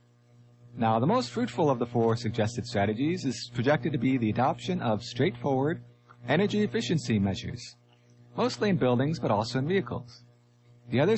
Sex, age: male, 30-49